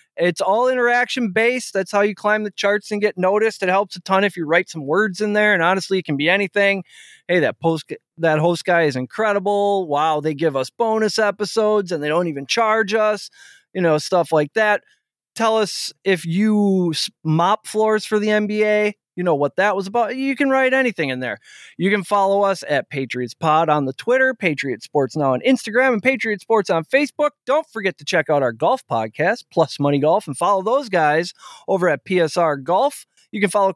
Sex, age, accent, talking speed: male, 20-39, American, 210 wpm